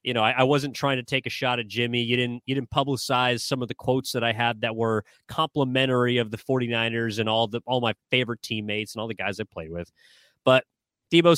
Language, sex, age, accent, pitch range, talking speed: English, male, 30-49, American, 125-190 Hz, 245 wpm